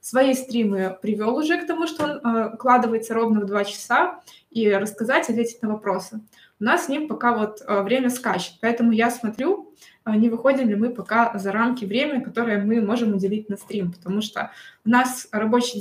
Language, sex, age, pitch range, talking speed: Russian, female, 20-39, 205-255 Hz, 180 wpm